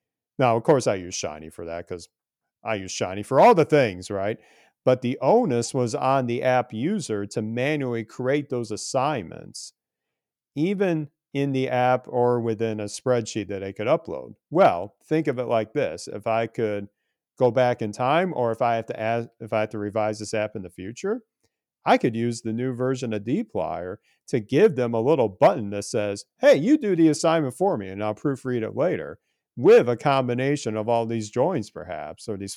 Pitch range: 105-125 Hz